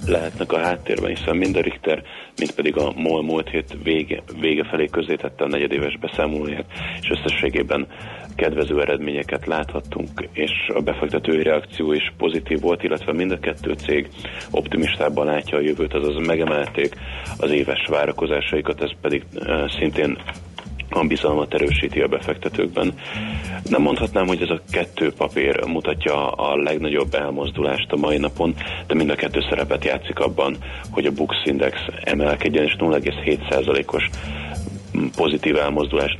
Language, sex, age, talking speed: Hungarian, male, 30-49, 140 wpm